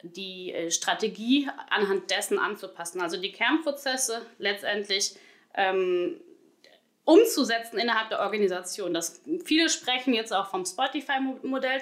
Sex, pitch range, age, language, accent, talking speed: female, 205-295 Hz, 20-39, German, German, 105 wpm